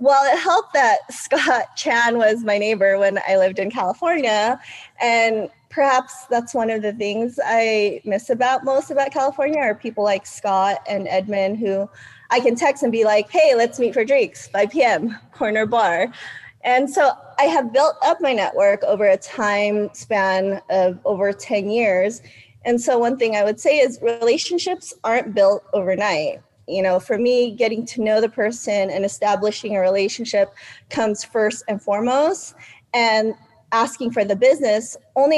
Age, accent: 20-39, American